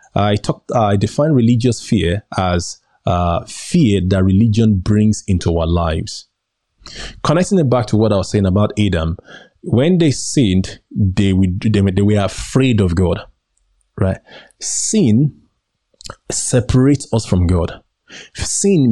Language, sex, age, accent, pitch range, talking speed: English, male, 20-39, Nigerian, 95-125 Hz, 135 wpm